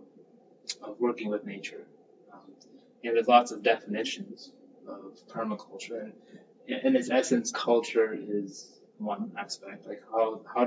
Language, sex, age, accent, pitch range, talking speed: English, male, 20-39, American, 110-135 Hz, 130 wpm